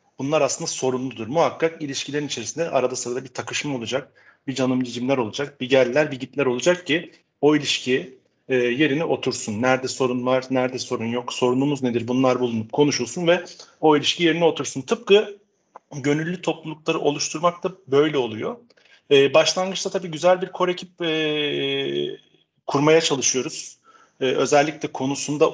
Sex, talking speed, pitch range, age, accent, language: male, 135 wpm, 130-170 Hz, 40-59, native, Turkish